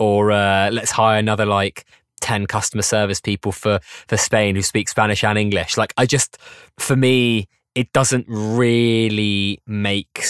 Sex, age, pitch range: male, 20-39, 100-115 Hz